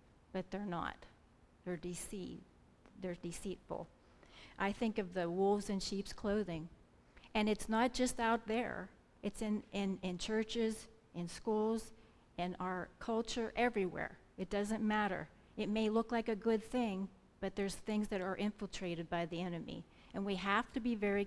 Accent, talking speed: American, 160 wpm